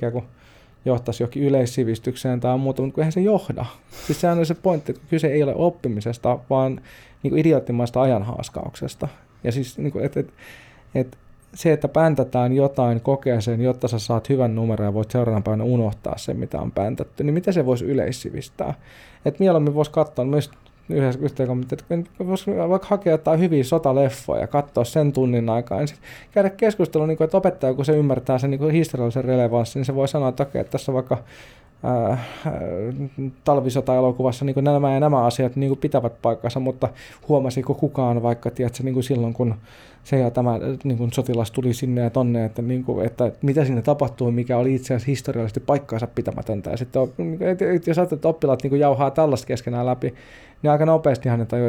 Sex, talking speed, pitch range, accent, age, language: male, 175 wpm, 120-145 Hz, native, 20-39, Finnish